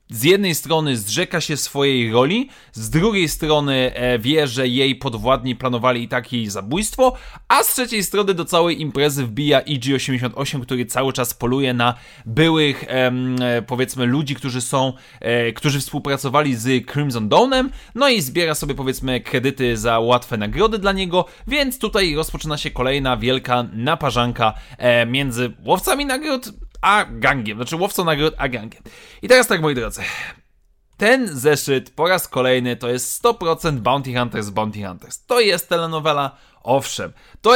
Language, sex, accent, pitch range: Polish, male, native, 125-170 Hz